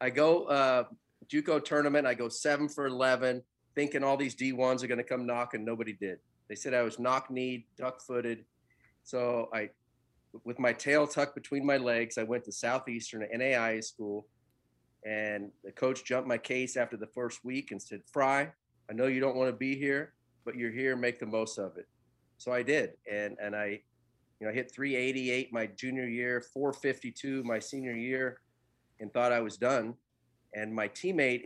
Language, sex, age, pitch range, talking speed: English, male, 40-59, 110-130 Hz, 185 wpm